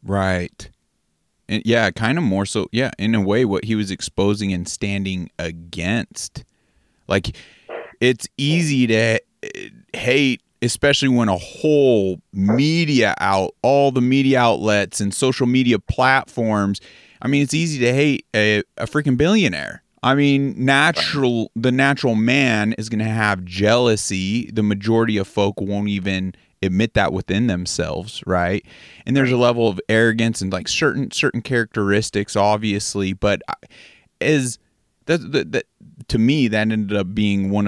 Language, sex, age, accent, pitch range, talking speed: English, male, 30-49, American, 95-120 Hz, 145 wpm